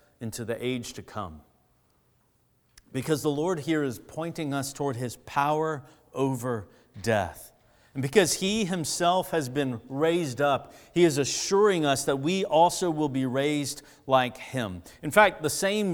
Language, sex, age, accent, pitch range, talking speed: English, male, 50-69, American, 130-175 Hz, 155 wpm